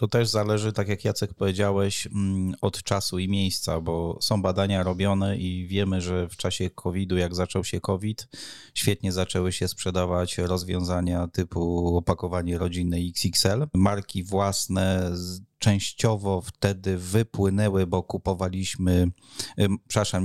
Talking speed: 125 wpm